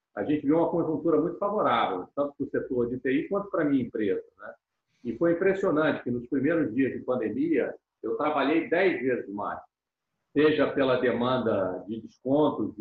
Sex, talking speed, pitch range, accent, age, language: male, 180 wpm, 120-195 Hz, Brazilian, 50-69, Portuguese